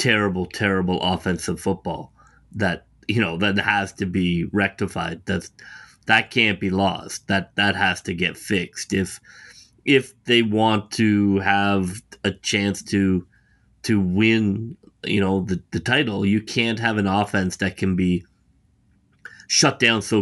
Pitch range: 95-110 Hz